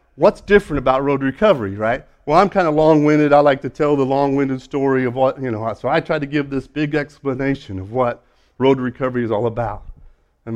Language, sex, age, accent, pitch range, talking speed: English, male, 40-59, American, 115-160 Hz, 215 wpm